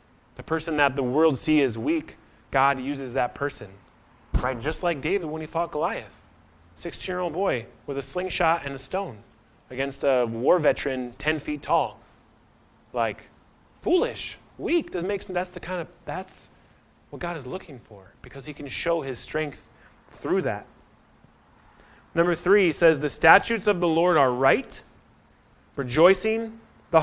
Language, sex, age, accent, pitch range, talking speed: English, male, 30-49, American, 125-165 Hz, 155 wpm